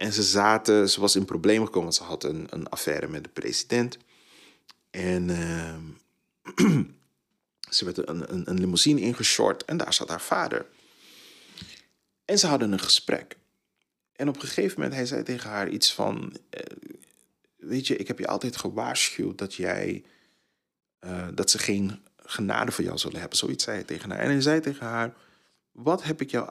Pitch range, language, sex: 95-120 Hz, Dutch, male